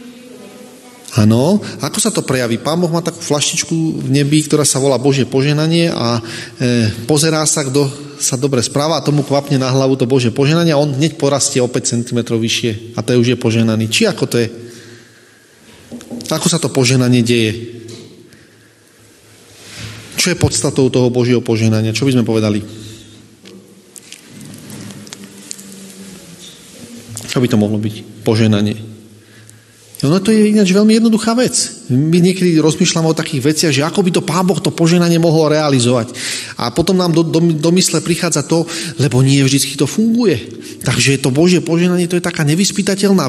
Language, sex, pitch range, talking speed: Slovak, male, 120-170 Hz, 160 wpm